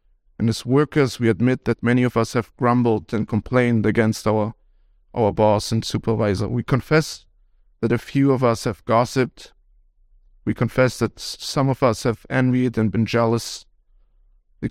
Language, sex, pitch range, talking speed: English, male, 110-135 Hz, 165 wpm